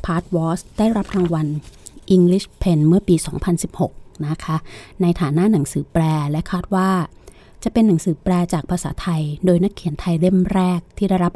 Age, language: 20-39, Thai